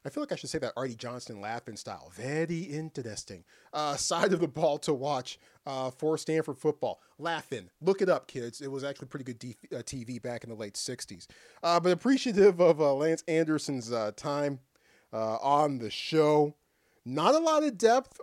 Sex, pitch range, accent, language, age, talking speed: male, 125-205 Hz, American, English, 30-49, 195 wpm